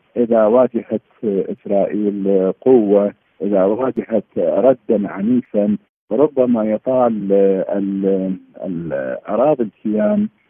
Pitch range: 100-130 Hz